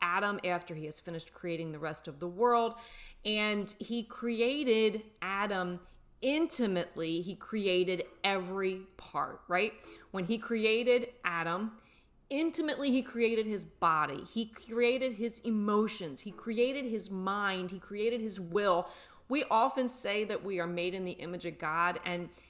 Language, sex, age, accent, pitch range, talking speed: English, female, 30-49, American, 180-230 Hz, 145 wpm